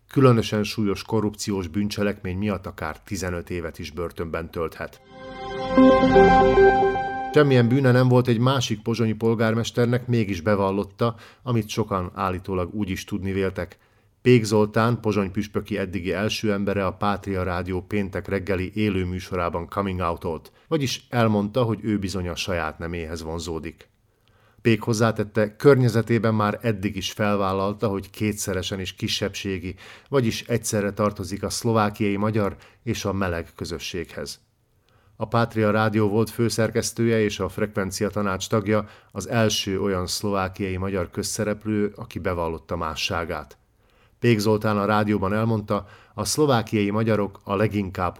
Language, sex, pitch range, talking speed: Hungarian, male, 95-115 Hz, 125 wpm